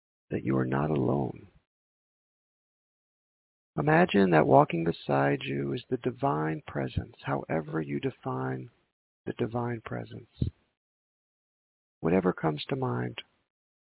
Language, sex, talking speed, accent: English, male, 105 wpm, American